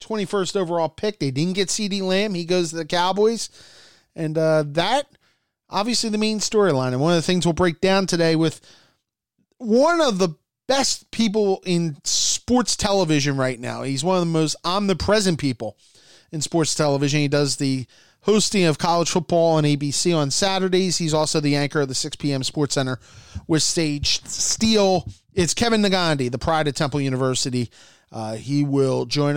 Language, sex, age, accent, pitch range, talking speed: English, male, 30-49, American, 135-180 Hz, 175 wpm